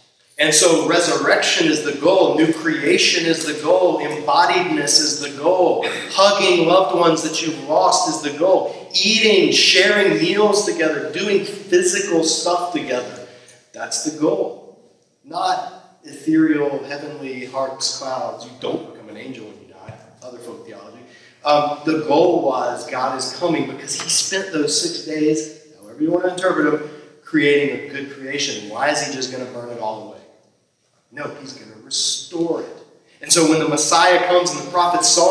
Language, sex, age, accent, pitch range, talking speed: English, male, 40-59, American, 145-180 Hz, 170 wpm